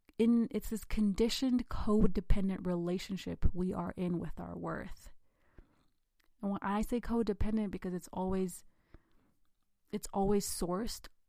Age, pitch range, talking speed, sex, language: 30-49, 175-205 Hz, 120 wpm, female, English